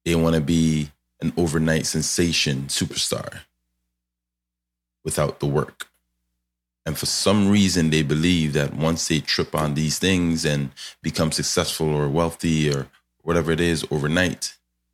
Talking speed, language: 135 wpm, English